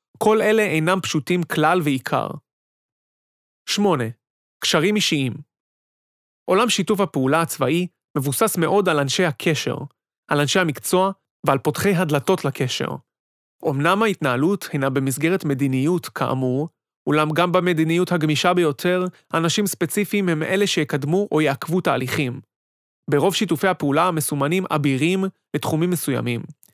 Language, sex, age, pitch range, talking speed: Hebrew, male, 30-49, 145-185 Hz, 115 wpm